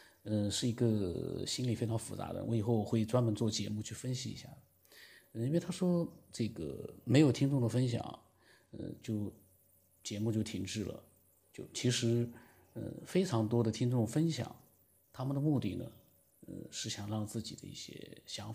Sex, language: male, Chinese